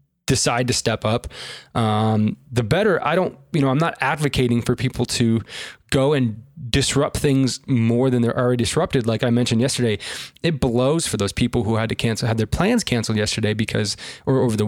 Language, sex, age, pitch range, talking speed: English, male, 20-39, 115-145 Hz, 195 wpm